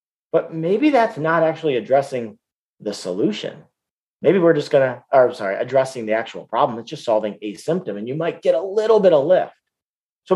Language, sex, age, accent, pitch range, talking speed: English, male, 40-59, American, 120-160 Hz, 205 wpm